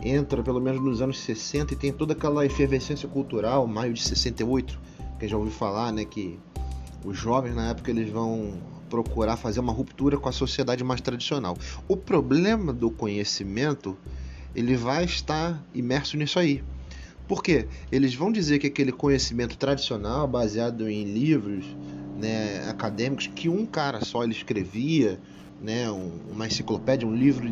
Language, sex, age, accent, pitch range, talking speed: Portuguese, male, 30-49, Brazilian, 105-135 Hz, 155 wpm